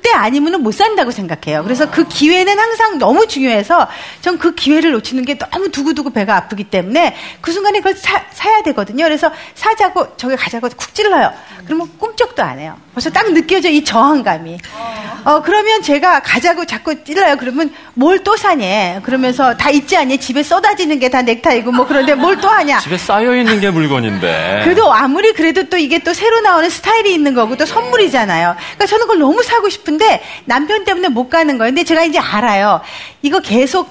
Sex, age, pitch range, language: female, 40-59, 250-370 Hz, Korean